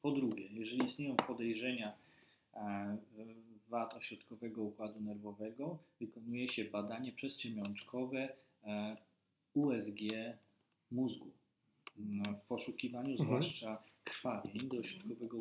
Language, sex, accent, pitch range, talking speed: Polish, male, native, 105-125 Hz, 80 wpm